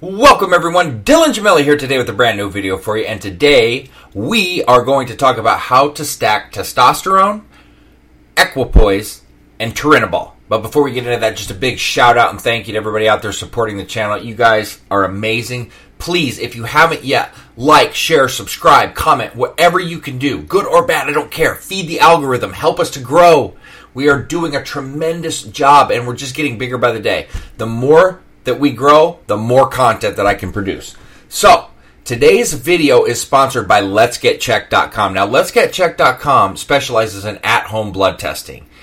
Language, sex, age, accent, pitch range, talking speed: English, male, 30-49, American, 110-160 Hz, 185 wpm